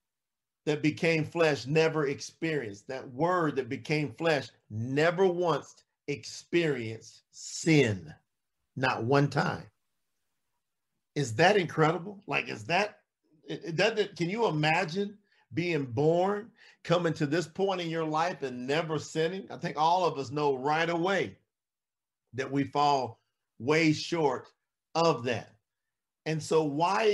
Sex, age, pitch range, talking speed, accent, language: male, 50-69, 140-180 Hz, 125 wpm, American, English